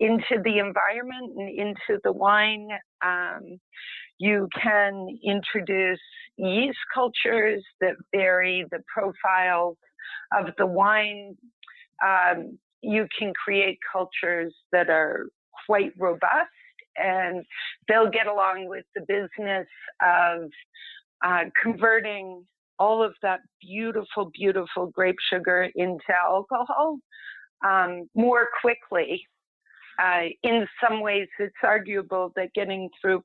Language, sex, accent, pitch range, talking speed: English, female, American, 180-215 Hz, 110 wpm